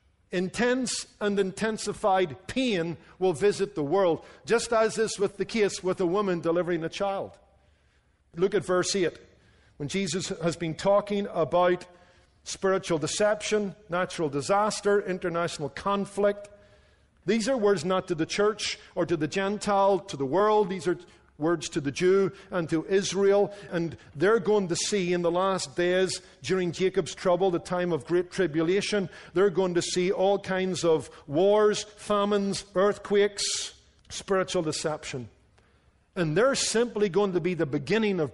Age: 50-69